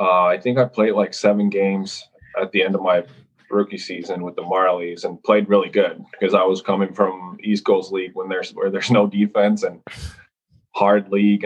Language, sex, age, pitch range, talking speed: English, male, 20-39, 95-105 Hz, 205 wpm